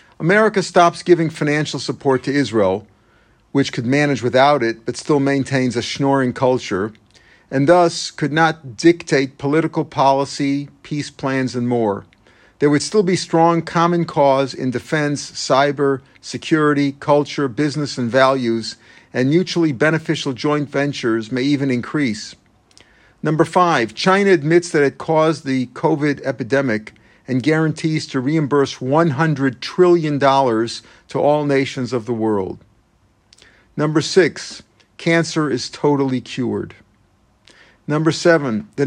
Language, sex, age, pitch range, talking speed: English, male, 50-69, 125-155 Hz, 130 wpm